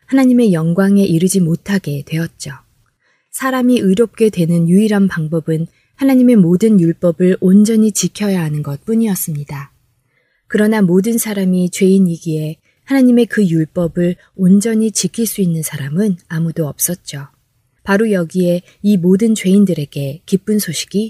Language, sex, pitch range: Korean, female, 155-205 Hz